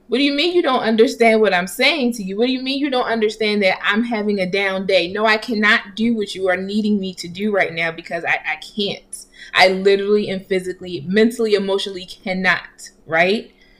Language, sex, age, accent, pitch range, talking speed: English, female, 20-39, American, 195-240 Hz, 220 wpm